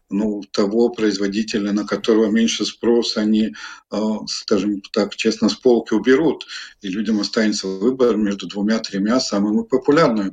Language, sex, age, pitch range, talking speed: Russian, male, 50-69, 105-120 Hz, 130 wpm